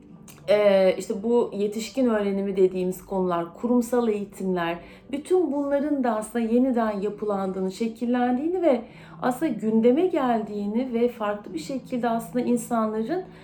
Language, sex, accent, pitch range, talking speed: Turkish, female, native, 190-245 Hz, 110 wpm